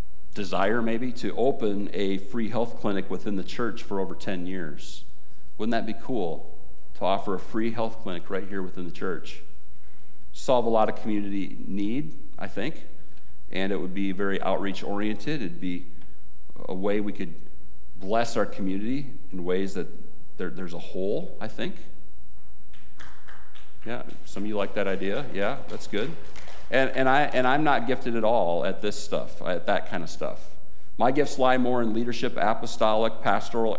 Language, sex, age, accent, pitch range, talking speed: English, male, 40-59, American, 85-110 Hz, 175 wpm